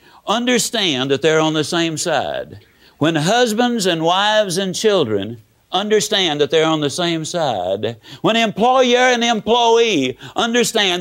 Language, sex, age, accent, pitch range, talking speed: English, male, 60-79, American, 155-200 Hz, 135 wpm